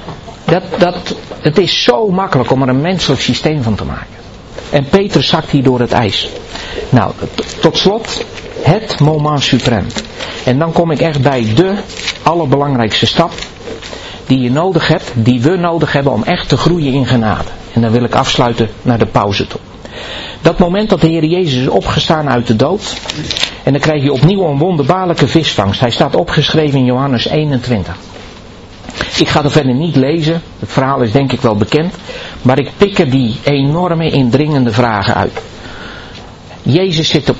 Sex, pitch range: male, 115-160 Hz